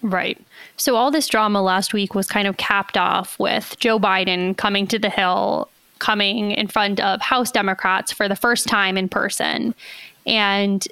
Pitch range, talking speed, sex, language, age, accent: 205-240 Hz, 175 wpm, female, English, 20-39, American